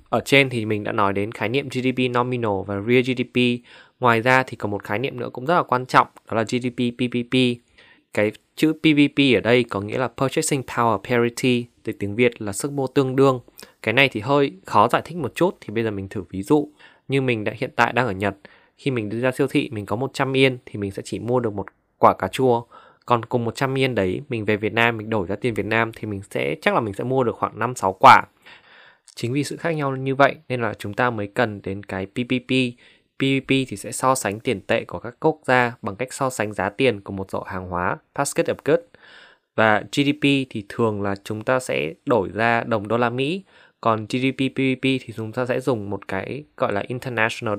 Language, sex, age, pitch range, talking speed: Vietnamese, male, 20-39, 105-135 Hz, 240 wpm